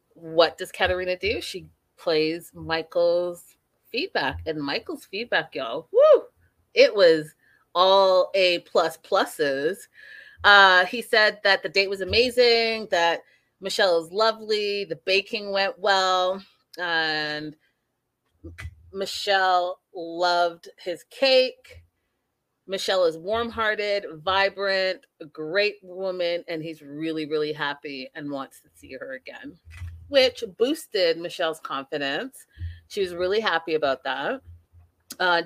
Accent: American